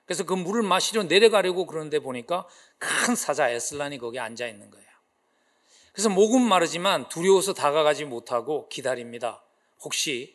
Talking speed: 130 wpm